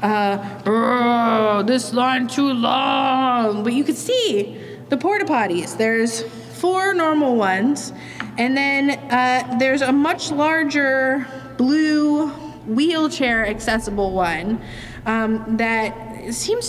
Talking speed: 110 wpm